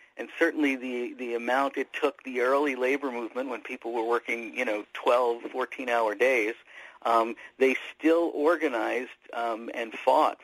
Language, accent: English, American